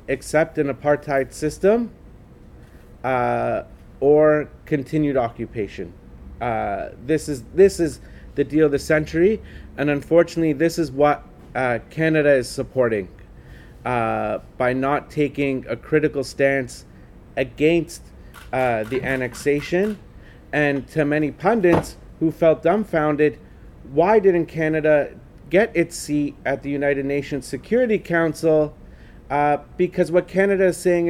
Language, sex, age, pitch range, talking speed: English, male, 30-49, 130-160 Hz, 120 wpm